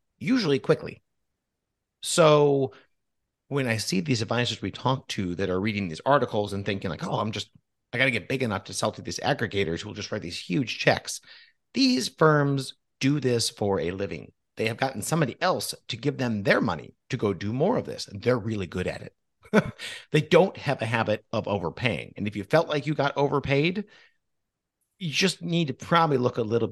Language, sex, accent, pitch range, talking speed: English, male, American, 100-140 Hz, 205 wpm